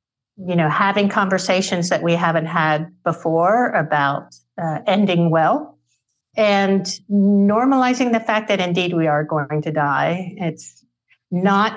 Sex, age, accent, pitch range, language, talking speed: female, 50-69, American, 165-210 Hz, English, 135 wpm